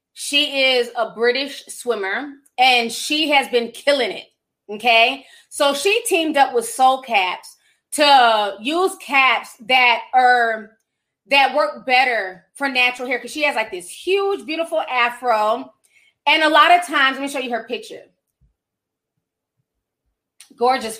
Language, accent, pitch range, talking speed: English, American, 230-295 Hz, 145 wpm